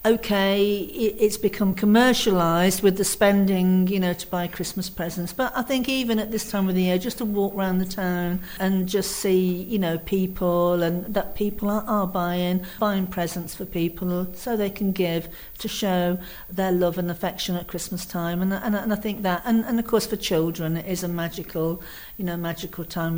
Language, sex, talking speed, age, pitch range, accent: English, female, 200 wpm, 50-69, 175-210 Hz, British